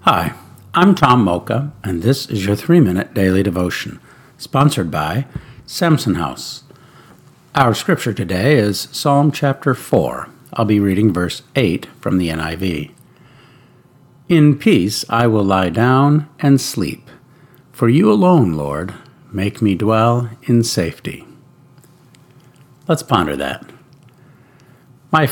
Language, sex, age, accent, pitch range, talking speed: English, male, 60-79, American, 100-140 Hz, 120 wpm